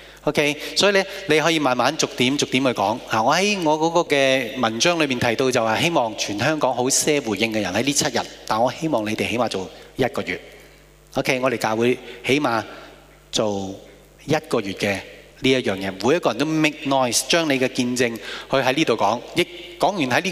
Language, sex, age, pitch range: Japanese, male, 30-49, 120-155 Hz